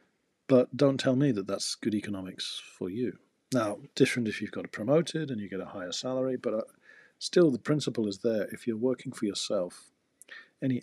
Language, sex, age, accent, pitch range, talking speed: English, male, 40-59, British, 100-135 Hz, 190 wpm